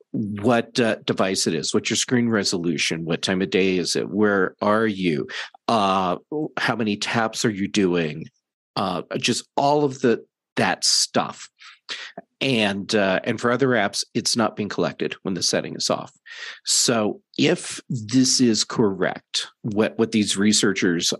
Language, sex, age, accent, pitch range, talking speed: English, male, 50-69, American, 100-120 Hz, 160 wpm